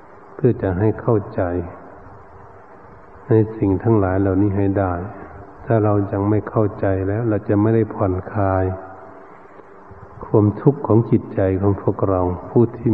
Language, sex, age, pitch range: Thai, male, 60-79, 95-110 Hz